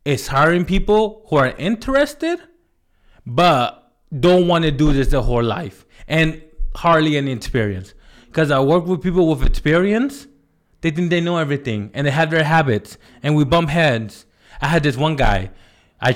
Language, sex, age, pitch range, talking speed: English, male, 20-39, 125-170 Hz, 170 wpm